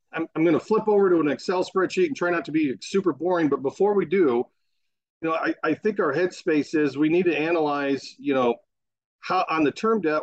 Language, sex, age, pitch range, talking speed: English, male, 40-59, 125-175 Hz, 235 wpm